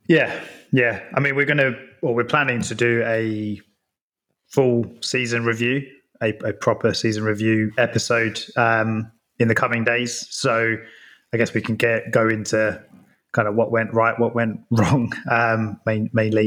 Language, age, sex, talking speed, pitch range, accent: English, 20-39, male, 170 wpm, 110-120 Hz, British